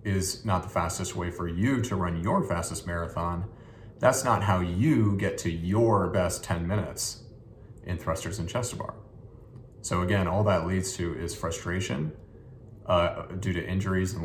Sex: male